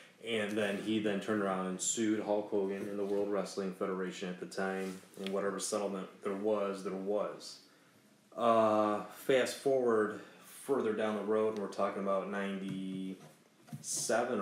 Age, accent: 30-49, American